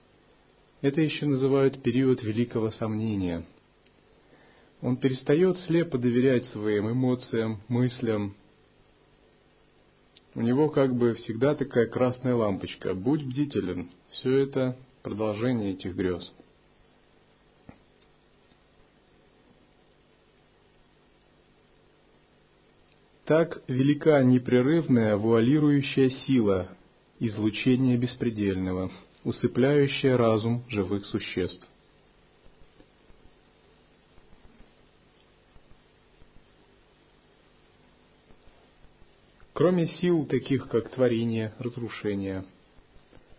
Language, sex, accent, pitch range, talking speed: Russian, male, native, 105-135 Hz, 60 wpm